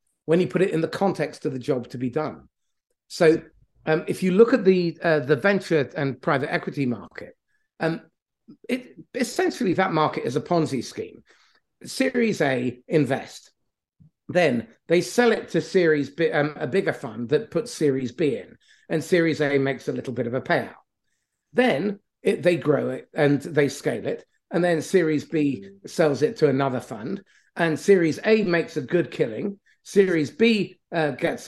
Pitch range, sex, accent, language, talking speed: 145-185 Hz, male, British, English, 180 wpm